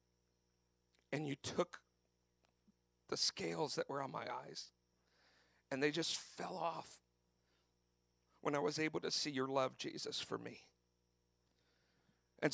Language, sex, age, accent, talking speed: English, male, 50-69, American, 130 wpm